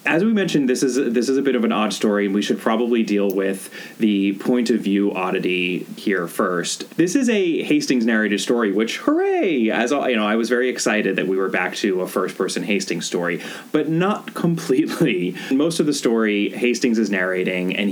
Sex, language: male, English